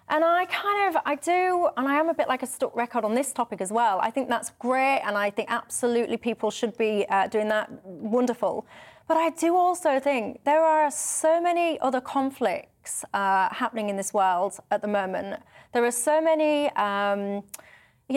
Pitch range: 215-280 Hz